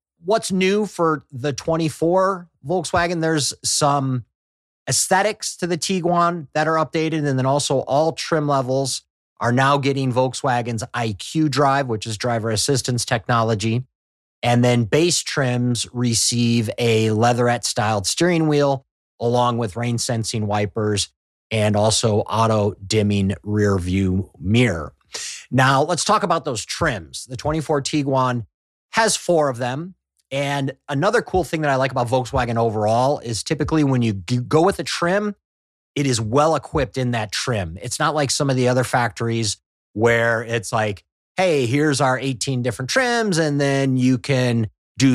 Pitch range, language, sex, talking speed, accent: 115-155 Hz, English, male, 150 wpm, American